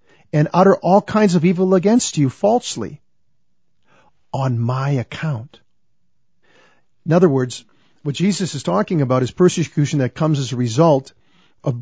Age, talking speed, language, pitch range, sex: 50-69, 140 wpm, English, 135-180 Hz, male